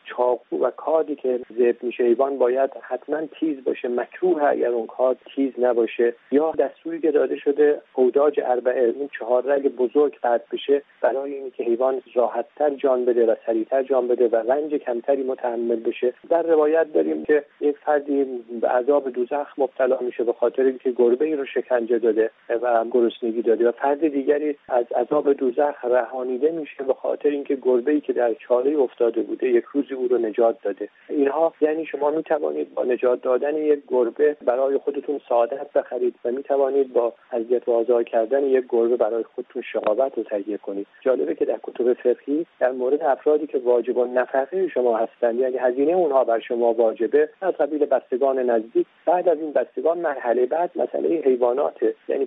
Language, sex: Persian, male